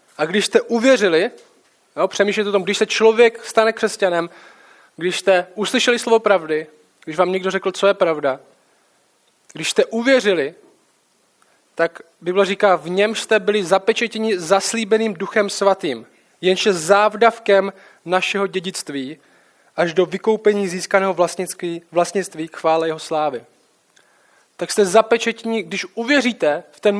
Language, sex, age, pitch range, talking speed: Czech, male, 20-39, 180-225 Hz, 130 wpm